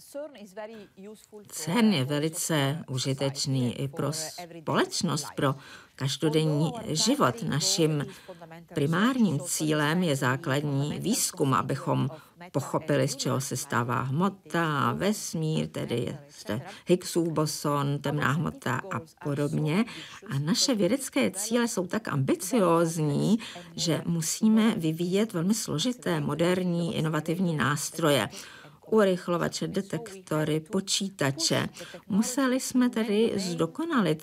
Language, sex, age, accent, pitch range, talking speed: Czech, female, 50-69, native, 150-210 Hz, 95 wpm